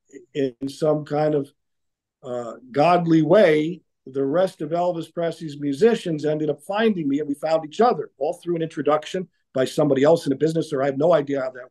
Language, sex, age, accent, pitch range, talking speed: English, male, 50-69, American, 140-170 Hz, 200 wpm